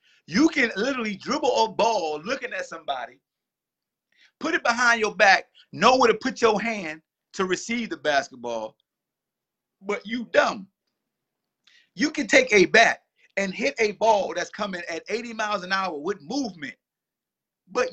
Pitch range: 200-275 Hz